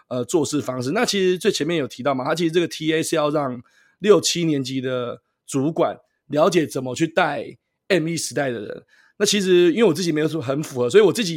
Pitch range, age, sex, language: 140-180 Hz, 20-39, male, Chinese